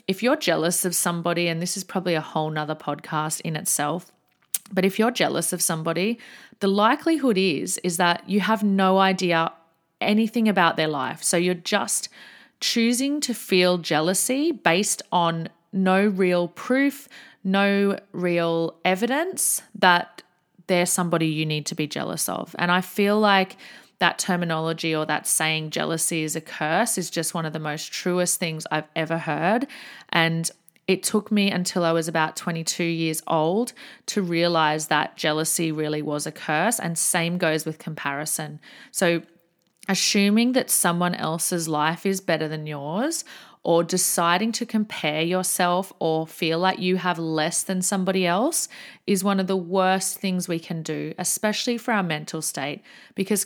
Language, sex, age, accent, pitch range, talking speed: English, female, 30-49, Australian, 165-205 Hz, 165 wpm